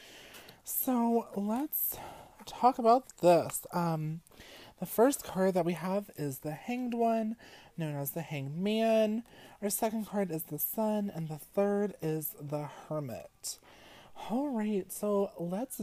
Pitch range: 170-210 Hz